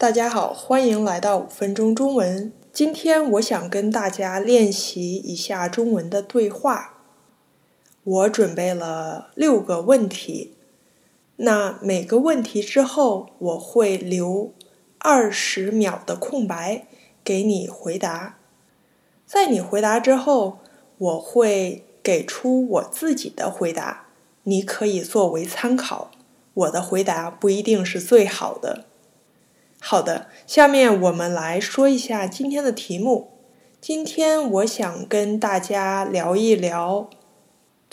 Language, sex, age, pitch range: Chinese, female, 20-39, 190-255 Hz